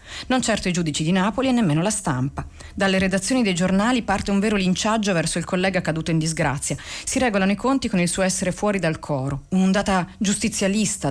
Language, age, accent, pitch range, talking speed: Italian, 40-59, native, 160-195 Hz, 200 wpm